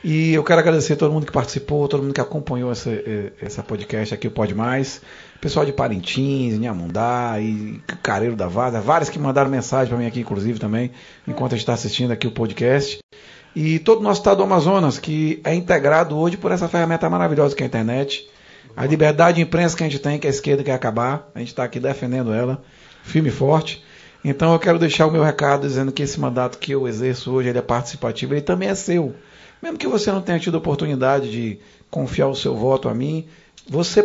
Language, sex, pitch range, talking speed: Portuguese, male, 125-160 Hz, 215 wpm